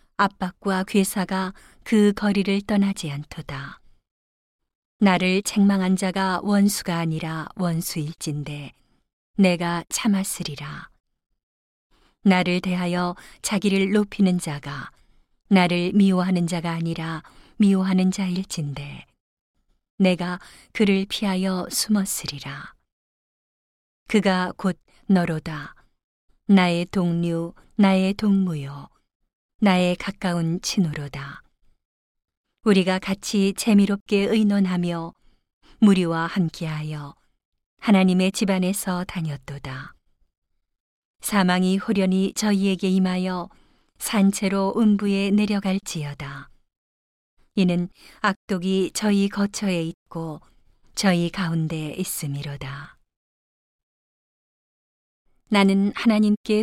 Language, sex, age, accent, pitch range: Korean, female, 40-59, native, 165-200 Hz